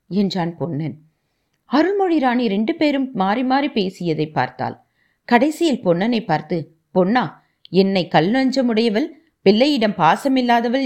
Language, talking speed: Tamil, 100 wpm